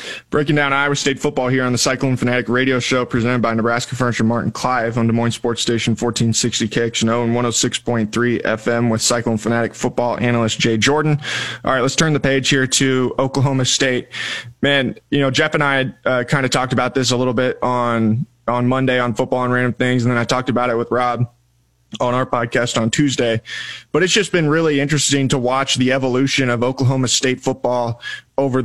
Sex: male